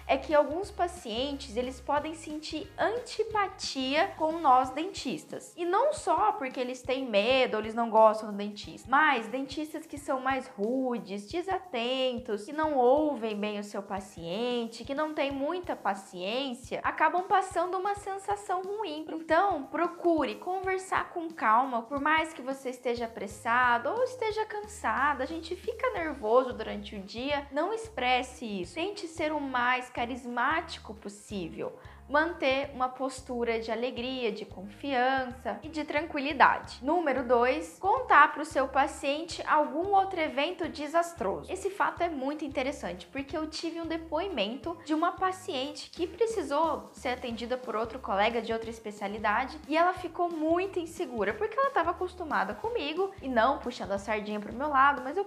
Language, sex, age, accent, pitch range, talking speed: Portuguese, female, 10-29, Brazilian, 245-340 Hz, 155 wpm